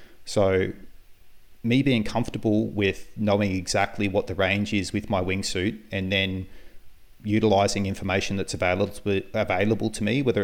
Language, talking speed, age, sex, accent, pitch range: English, 140 wpm, 30-49, male, Australian, 90-110 Hz